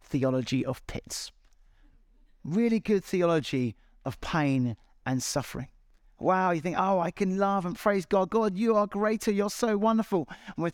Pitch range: 145-195 Hz